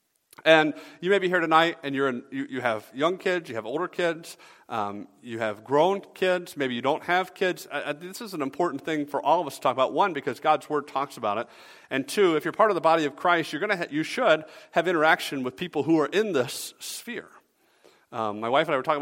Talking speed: 255 wpm